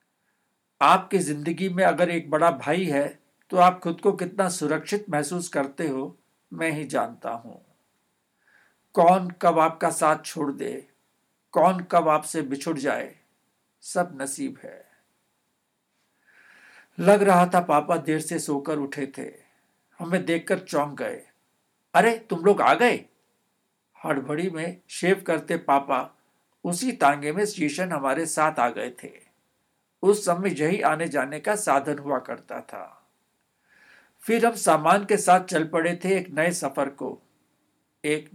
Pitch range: 150-185 Hz